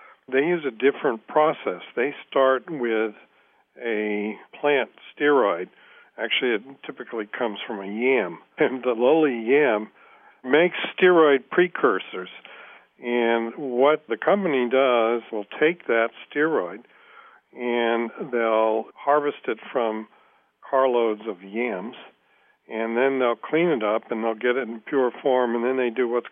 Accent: American